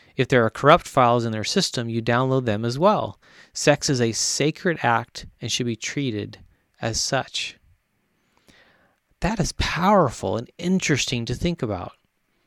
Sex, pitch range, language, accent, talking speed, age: male, 115-145 Hz, English, American, 155 wpm, 30-49